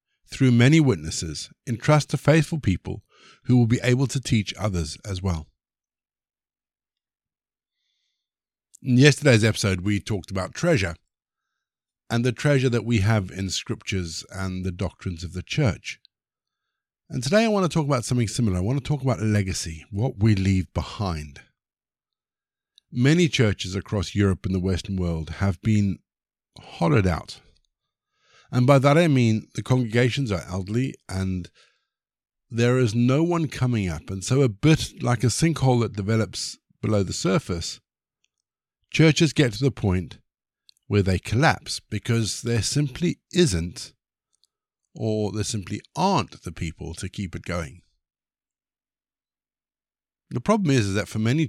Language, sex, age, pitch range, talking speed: English, male, 50-69, 95-130 Hz, 145 wpm